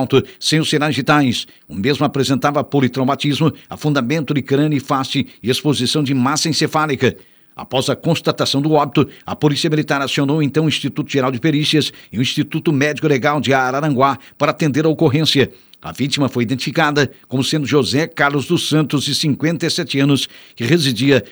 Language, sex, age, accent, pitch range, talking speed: Portuguese, male, 60-79, Brazilian, 135-150 Hz, 165 wpm